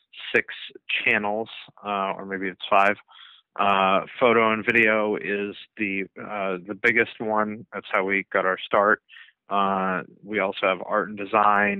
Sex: male